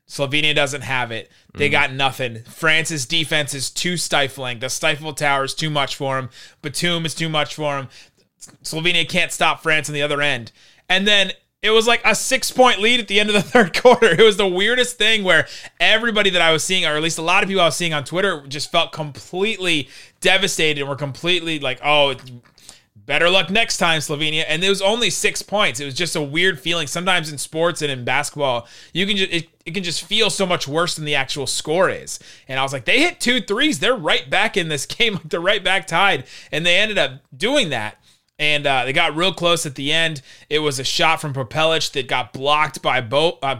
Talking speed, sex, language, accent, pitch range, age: 230 wpm, male, English, American, 140-185 Hz, 30-49